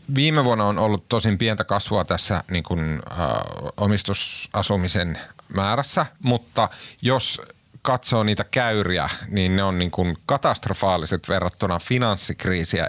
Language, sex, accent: Finnish, male, native